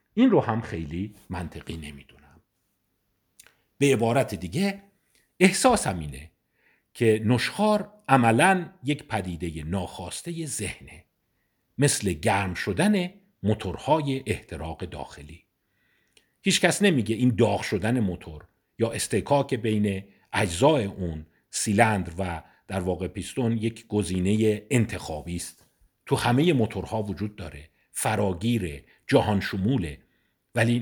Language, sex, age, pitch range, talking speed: Persian, male, 50-69, 90-135 Hz, 105 wpm